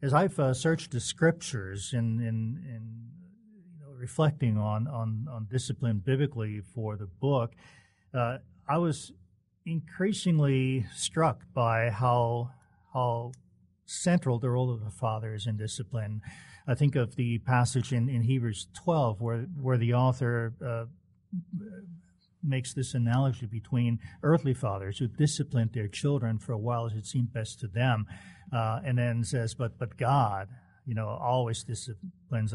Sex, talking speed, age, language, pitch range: male, 150 wpm, 50-69, English, 110-135 Hz